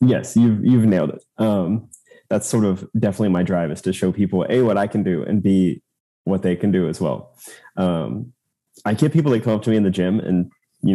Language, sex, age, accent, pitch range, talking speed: English, male, 30-49, American, 95-125 Hz, 235 wpm